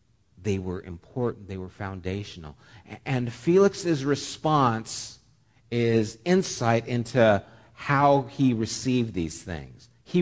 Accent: American